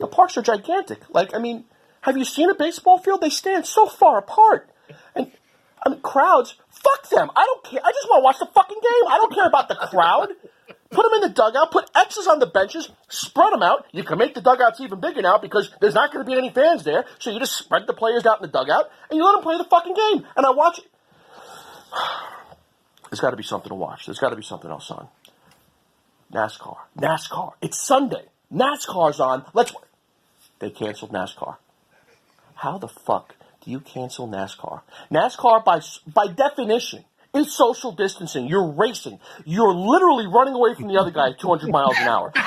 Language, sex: English, male